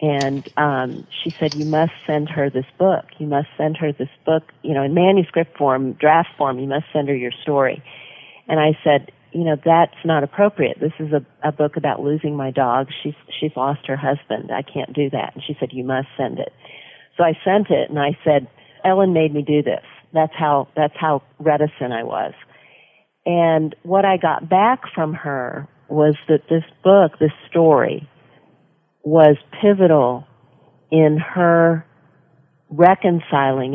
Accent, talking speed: American, 175 wpm